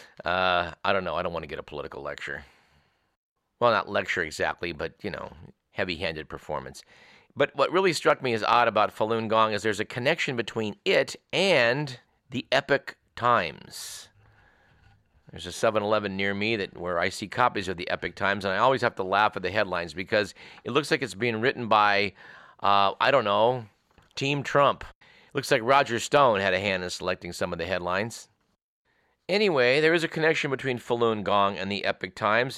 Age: 50-69